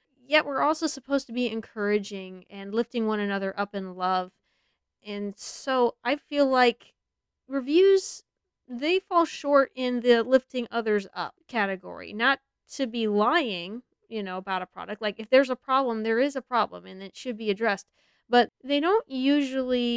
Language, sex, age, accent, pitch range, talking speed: English, female, 30-49, American, 200-245 Hz, 170 wpm